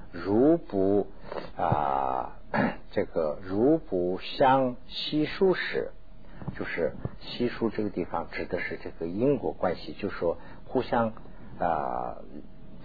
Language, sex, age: Chinese, male, 60-79